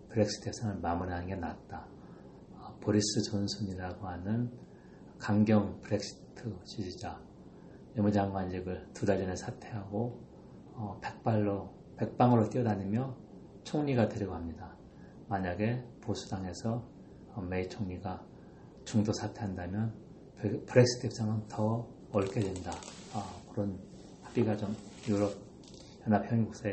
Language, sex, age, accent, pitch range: Korean, male, 40-59, native, 95-110 Hz